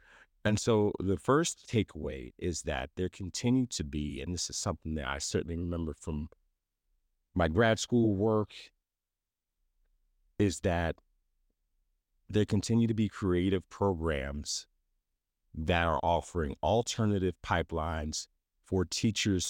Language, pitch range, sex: English, 80-100 Hz, male